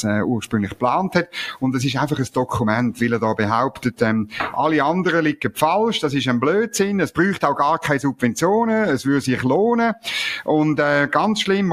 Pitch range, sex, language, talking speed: 120-165 Hz, male, German, 185 wpm